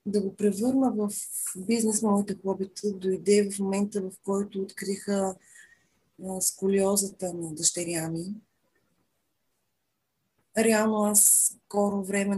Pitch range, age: 175-200 Hz, 20-39